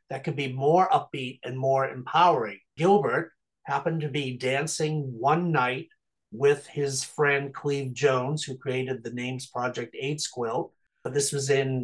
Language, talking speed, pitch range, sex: English, 155 wpm, 130-150 Hz, male